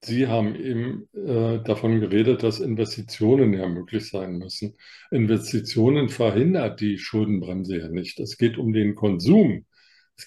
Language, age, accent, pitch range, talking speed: German, 50-69, German, 105-125 Hz, 140 wpm